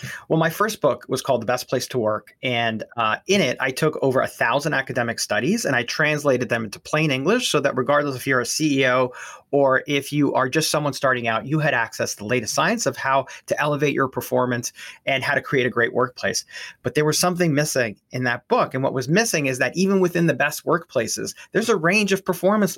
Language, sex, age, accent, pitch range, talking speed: English, male, 30-49, American, 130-170 Hz, 230 wpm